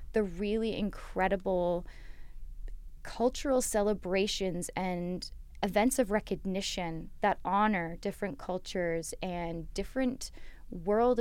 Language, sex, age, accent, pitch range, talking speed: English, female, 10-29, American, 175-215 Hz, 85 wpm